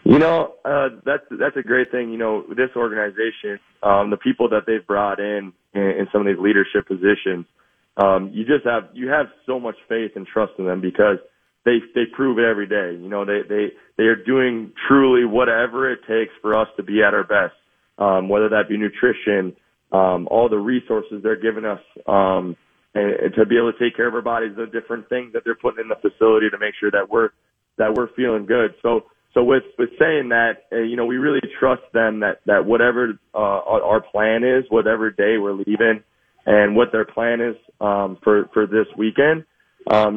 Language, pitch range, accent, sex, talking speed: English, 100-120 Hz, American, male, 210 wpm